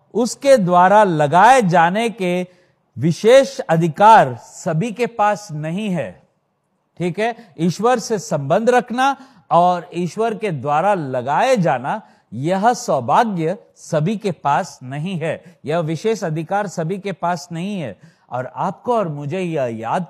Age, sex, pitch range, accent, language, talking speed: 50-69, male, 155-210 Hz, native, Hindi, 135 wpm